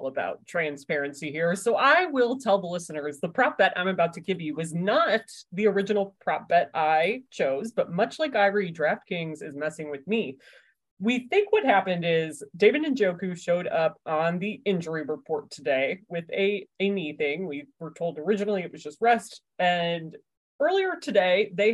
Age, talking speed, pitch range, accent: 30-49, 180 wpm, 170-220 Hz, American